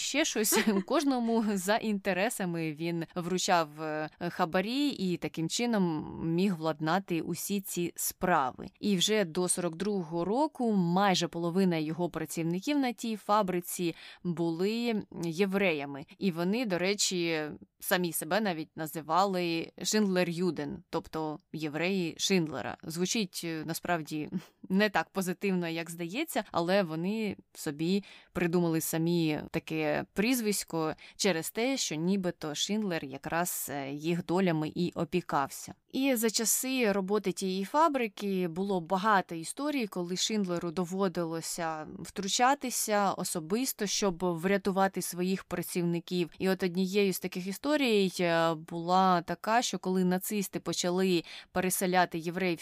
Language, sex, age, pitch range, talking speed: Ukrainian, female, 20-39, 170-200 Hz, 110 wpm